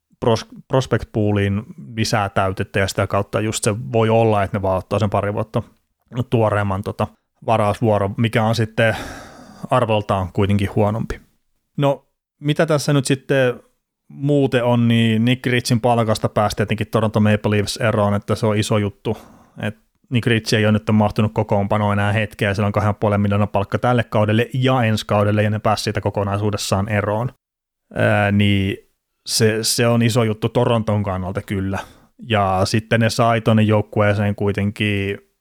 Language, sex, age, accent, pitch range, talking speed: Finnish, male, 30-49, native, 105-120 Hz, 150 wpm